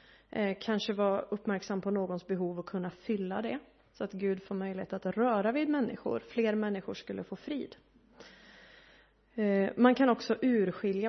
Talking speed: 150 wpm